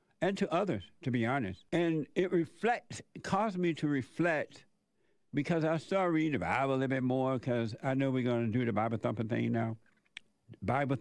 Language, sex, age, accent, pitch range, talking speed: English, male, 60-79, American, 125-165 Hz, 195 wpm